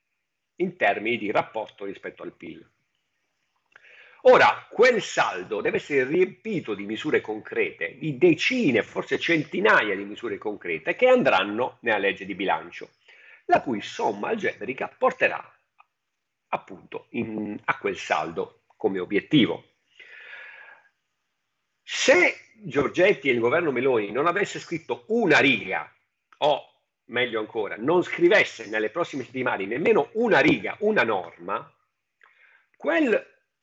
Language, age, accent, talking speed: Italian, 50-69, native, 120 wpm